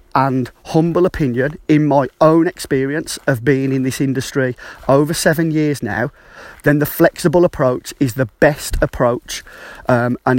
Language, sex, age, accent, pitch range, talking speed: English, male, 30-49, British, 125-145 Hz, 150 wpm